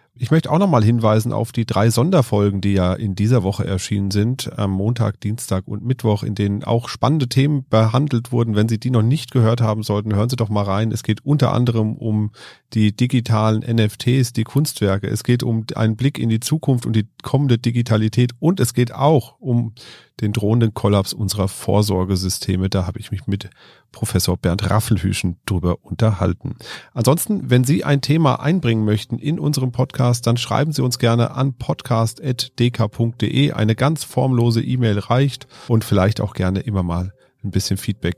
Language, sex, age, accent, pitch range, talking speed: German, male, 40-59, German, 100-130 Hz, 180 wpm